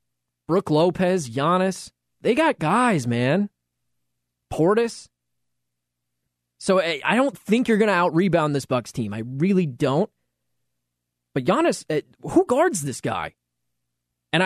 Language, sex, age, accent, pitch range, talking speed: English, male, 20-39, American, 105-180 Hz, 120 wpm